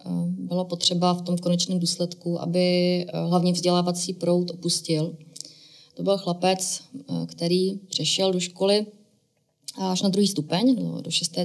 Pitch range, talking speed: 165-190 Hz, 125 wpm